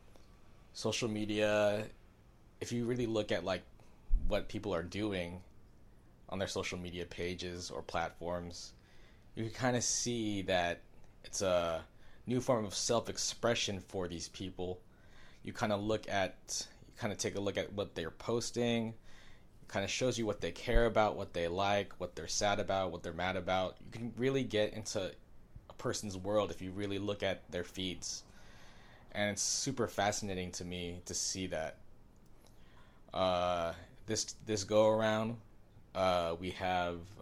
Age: 20-39